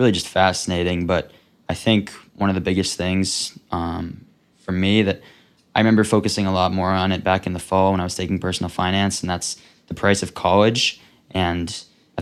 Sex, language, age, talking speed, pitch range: male, English, 20-39, 200 wpm, 90-100 Hz